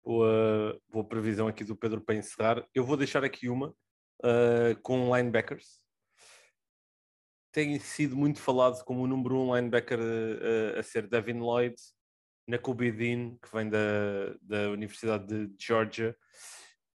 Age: 20-39